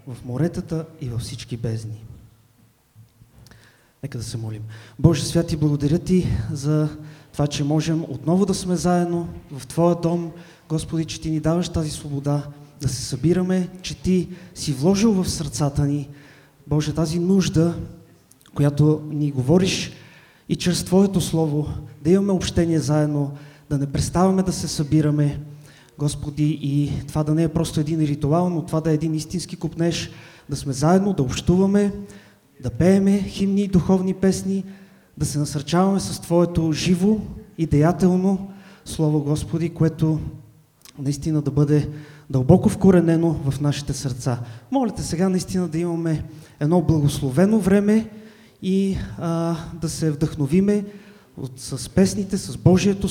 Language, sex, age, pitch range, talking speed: English, male, 30-49, 145-180 Hz, 140 wpm